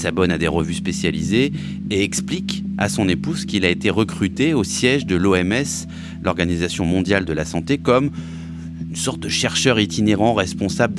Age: 30-49